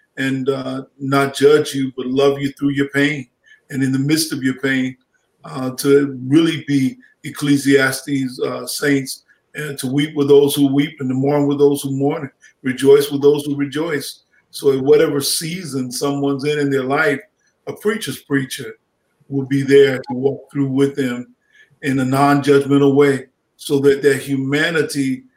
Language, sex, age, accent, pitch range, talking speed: English, male, 50-69, American, 135-150 Hz, 170 wpm